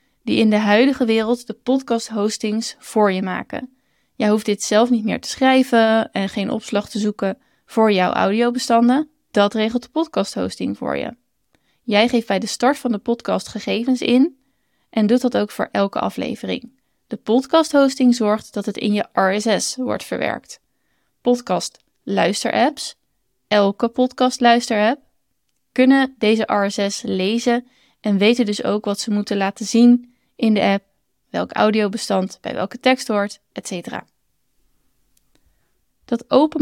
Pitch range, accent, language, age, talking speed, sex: 205-250 Hz, Dutch, Dutch, 20-39, 145 wpm, female